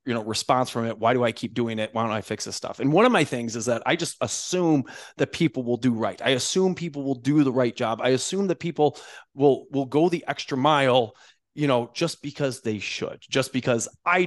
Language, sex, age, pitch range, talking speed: English, male, 30-49, 115-150 Hz, 250 wpm